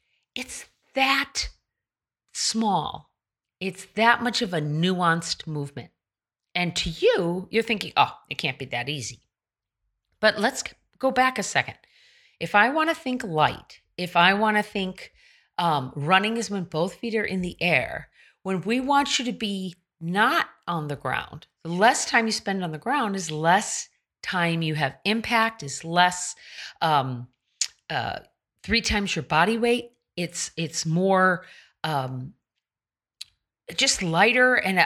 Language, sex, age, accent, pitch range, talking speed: English, female, 40-59, American, 150-215 Hz, 150 wpm